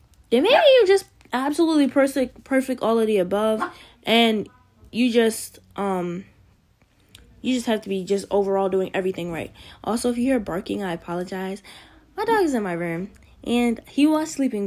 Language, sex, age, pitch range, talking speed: English, female, 10-29, 195-255 Hz, 170 wpm